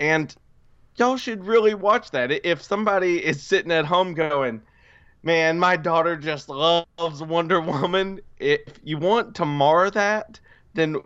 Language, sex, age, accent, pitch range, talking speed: English, male, 20-39, American, 125-160 Hz, 145 wpm